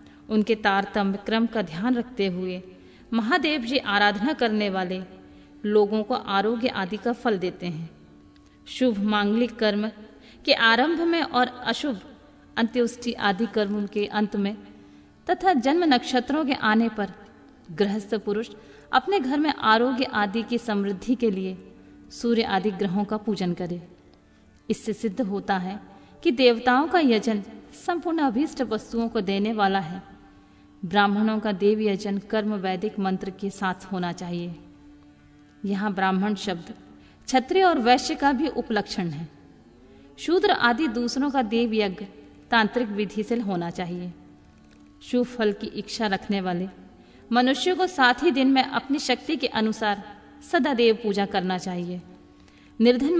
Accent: native